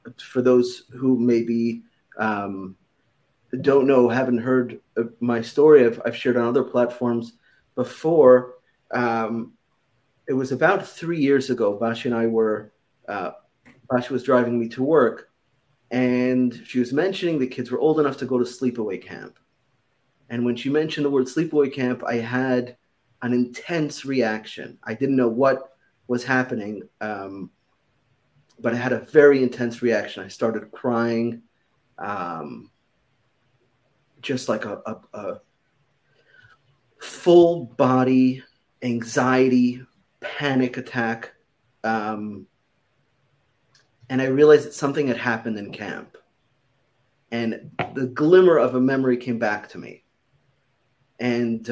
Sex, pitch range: male, 120-135 Hz